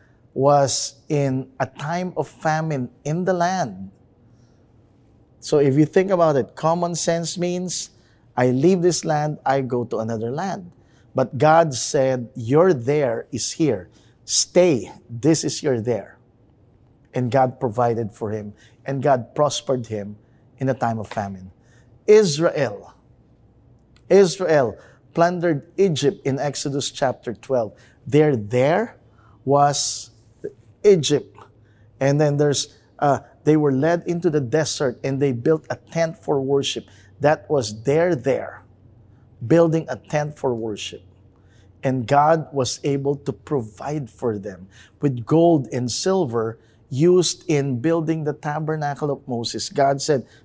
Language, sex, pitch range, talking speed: English, male, 115-155 Hz, 135 wpm